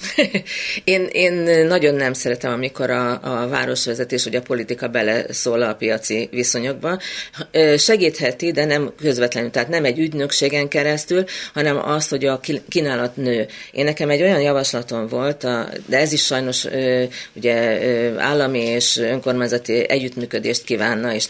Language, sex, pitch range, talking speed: Hungarian, female, 120-145 Hz, 135 wpm